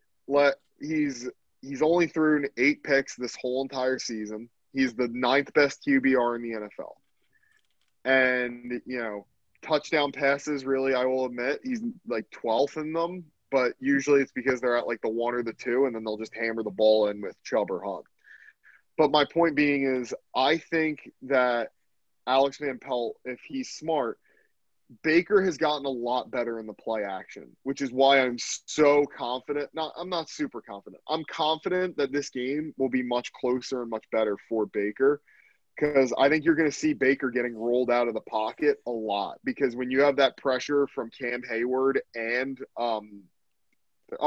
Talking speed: 180 wpm